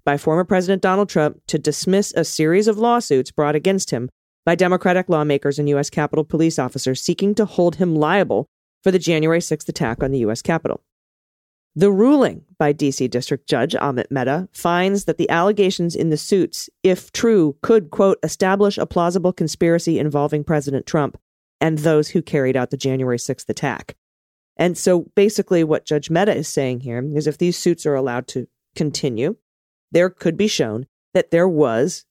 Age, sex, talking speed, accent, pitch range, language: 40-59, female, 180 wpm, American, 145-185 Hz, English